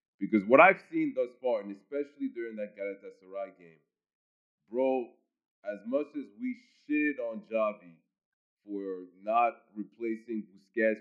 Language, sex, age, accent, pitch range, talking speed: English, male, 20-39, American, 100-145 Hz, 130 wpm